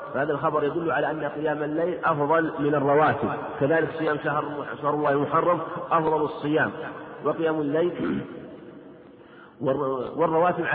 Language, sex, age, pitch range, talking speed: Arabic, male, 50-69, 140-160 Hz, 115 wpm